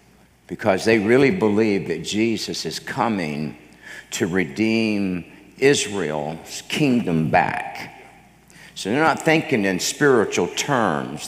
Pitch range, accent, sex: 95-125 Hz, American, male